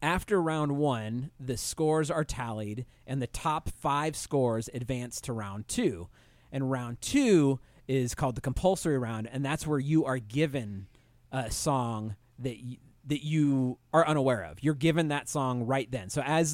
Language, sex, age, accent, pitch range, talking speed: English, male, 30-49, American, 120-155 Hz, 170 wpm